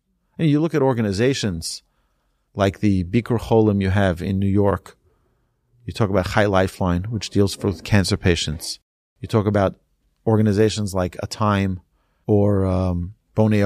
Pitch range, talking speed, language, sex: 95-125 Hz, 140 wpm, English, male